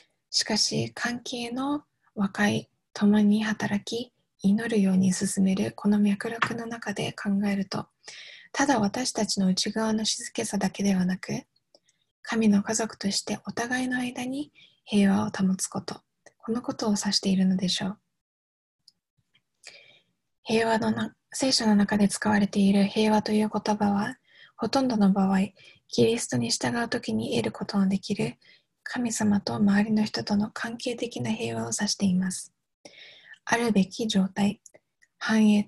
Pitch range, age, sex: 200-225 Hz, 20-39, female